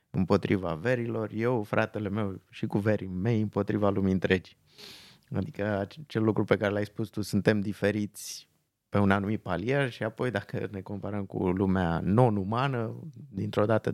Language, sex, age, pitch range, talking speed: Romanian, male, 20-39, 95-115 Hz, 155 wpm